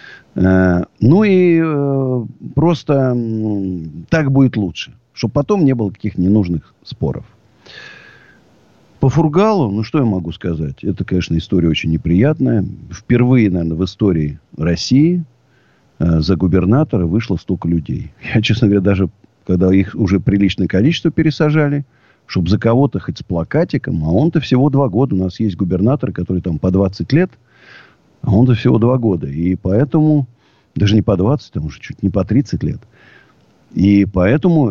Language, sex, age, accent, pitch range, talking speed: Russian, male, 50-69, native, 95-135 Hz, 155 wpm